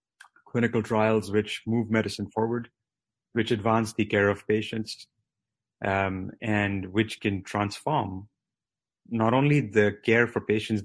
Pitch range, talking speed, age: 105-115 Hz, 125 wpm, 30-49